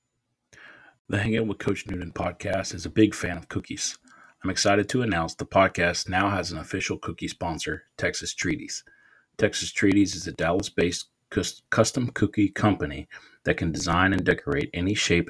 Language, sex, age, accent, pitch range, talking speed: English, male, 40-59, American, 105-135 Hz, 160 wpm